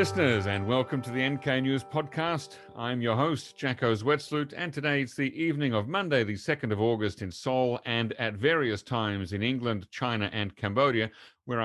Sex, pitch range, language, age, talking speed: male, 105-130 Hz, English, 40-59, 185 wpm